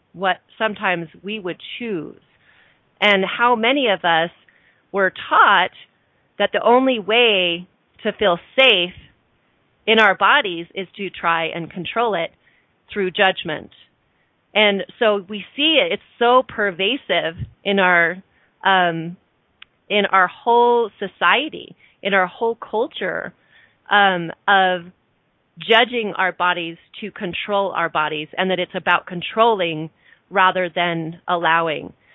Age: 30-49